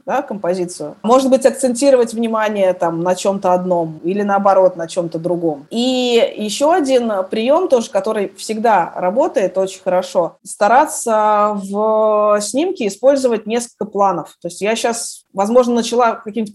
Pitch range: 200-270 Hz